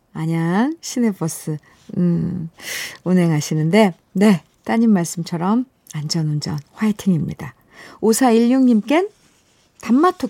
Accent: native